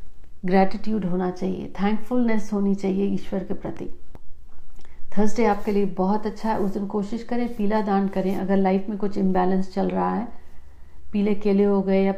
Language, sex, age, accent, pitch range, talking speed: Hindi, female, 50-69, native, 190-235 Hz, 170 wpm